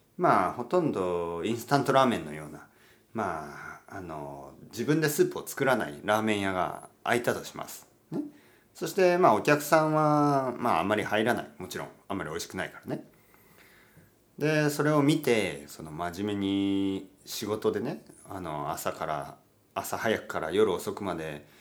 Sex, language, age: male, Japanese, 40-59